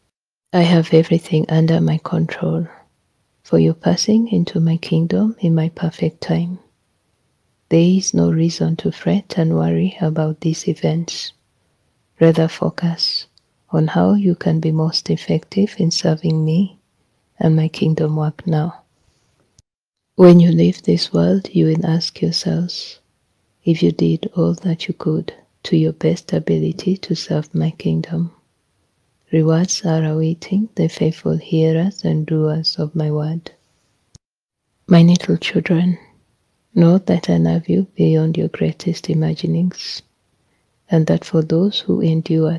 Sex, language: female, English